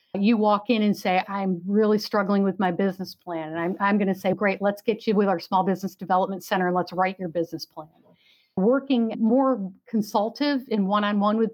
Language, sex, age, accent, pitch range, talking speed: English, female, 50-69, American, 185-220 Hz, 205 wpm